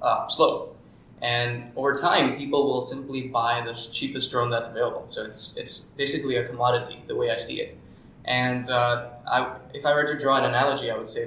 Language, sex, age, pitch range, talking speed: English, male, 20-39, 120-140 Hz, 195 wpm